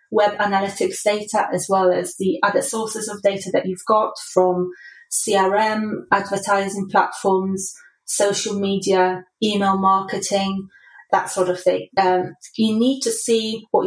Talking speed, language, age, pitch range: 140 wpm, English, 30-49, 190-220 Hz